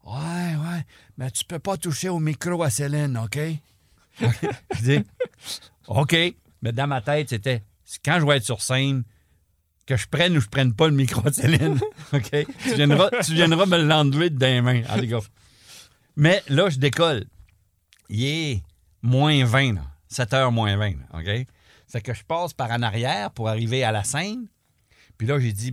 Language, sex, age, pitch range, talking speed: French, male, 50-69, 115-170 Hz, 205 wpm